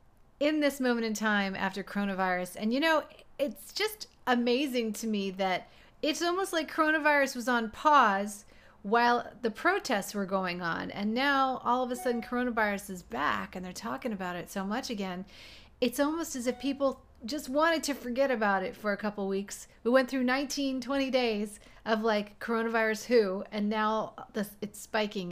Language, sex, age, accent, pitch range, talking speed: English, female, 40-59, American, 190-245 Hz, 180 wpm